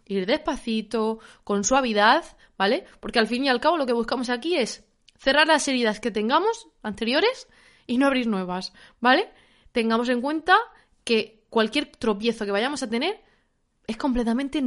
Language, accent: Spanish, Spanish